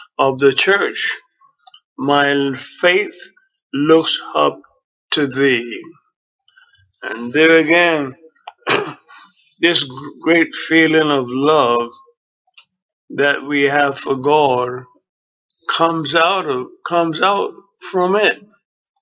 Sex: male